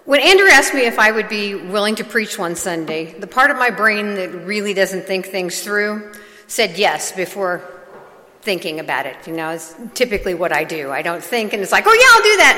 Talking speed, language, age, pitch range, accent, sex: 230 wpm, English, 50-69, 175-210 Hz, American, female